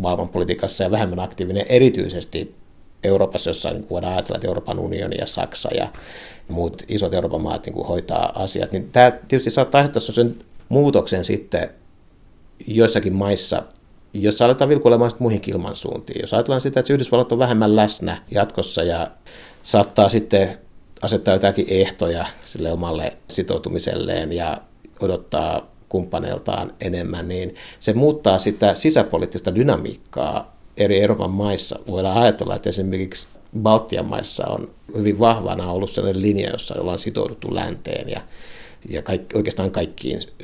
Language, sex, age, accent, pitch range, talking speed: Finnish, male, 60-79, native, 95-115 Hz, 130 wpm